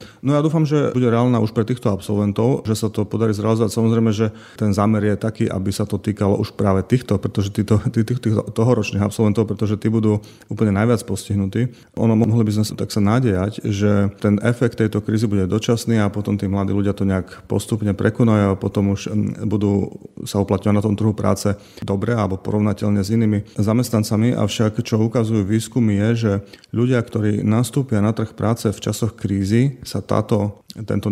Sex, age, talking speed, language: male, 30-49, 185 wpm, Slovak